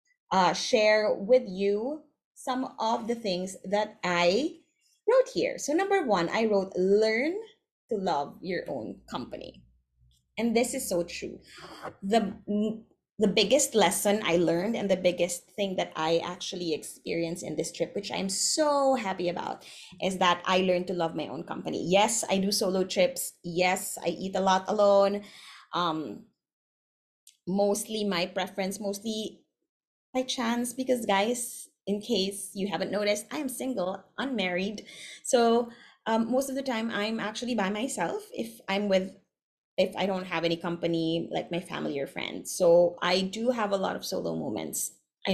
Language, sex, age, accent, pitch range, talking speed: Filipino, female, 20-39, native, 175-230 Hz, 165 wpm